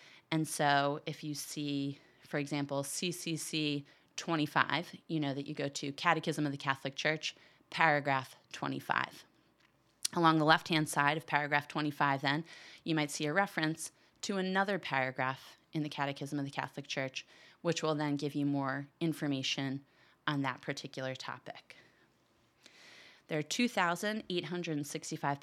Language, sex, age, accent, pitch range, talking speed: English, female, 30-49, American, 145-170 Hz, 140 wpm